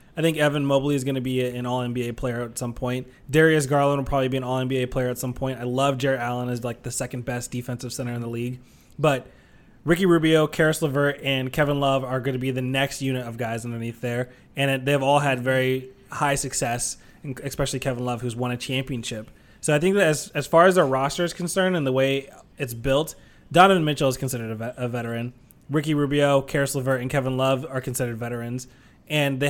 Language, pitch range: English, 125-140 Hz